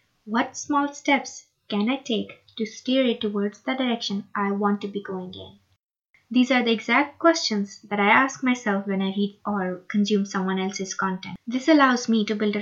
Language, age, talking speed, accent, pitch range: English, 20-39, 195 wpm, Indian, 200-235 Hz